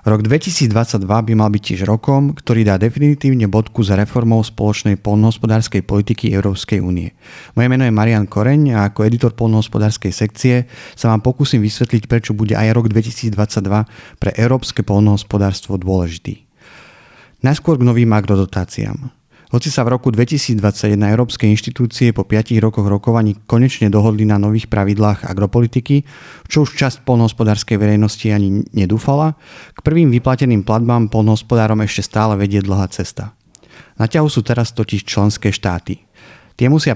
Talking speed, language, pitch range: 145 wpm, Slovak, 105-120 Hz